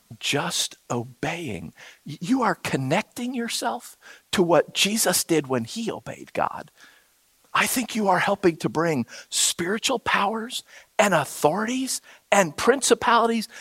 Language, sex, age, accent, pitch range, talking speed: English, male, 50-69, American, 140-215 Hz, 120 wpm